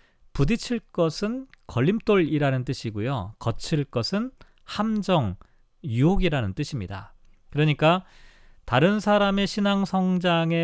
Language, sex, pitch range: Korean, male, 125-180 Hz